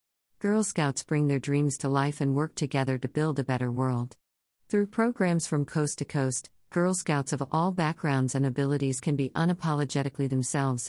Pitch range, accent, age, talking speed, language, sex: 130-160 Hz, American, 50-69, 175 wpm, English, female